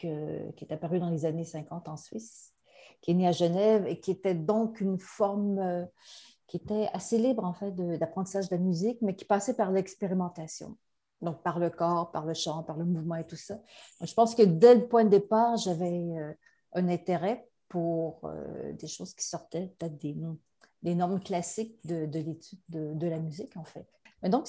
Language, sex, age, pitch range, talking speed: French, female, 50-69, 165-200 Hz, 210 wpm